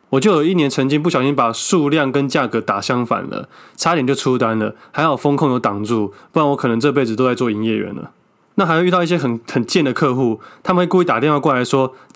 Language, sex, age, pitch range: Chinese, male, 20-39, 120-160 Hz